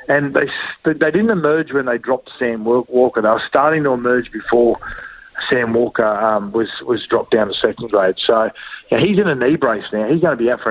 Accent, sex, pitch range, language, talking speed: Australian, male, 110-125 Hz, English, 225 wpm